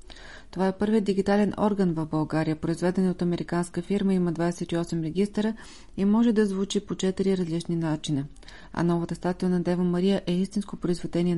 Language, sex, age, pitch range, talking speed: Bulgarian, female, 30-49, 165-195 Hz, 165 wpm